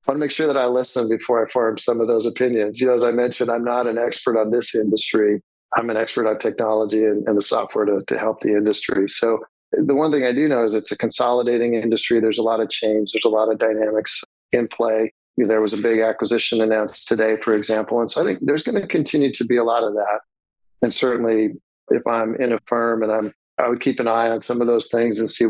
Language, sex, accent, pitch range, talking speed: English, male, American, 110-120 Hz, 255 wpm